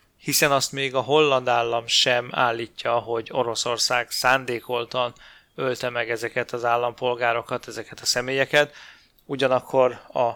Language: Hungarian